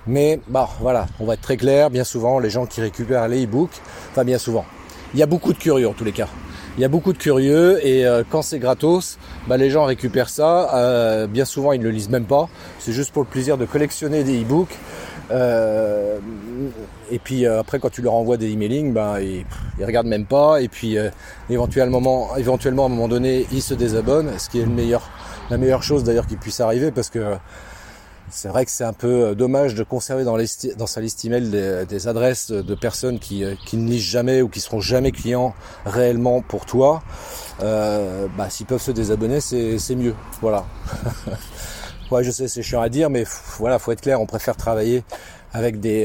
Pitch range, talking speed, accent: 110-130 Hz, 220 wpm, French